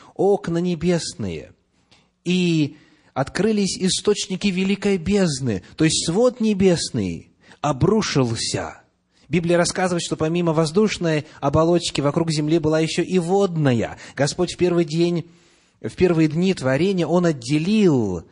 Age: 30-49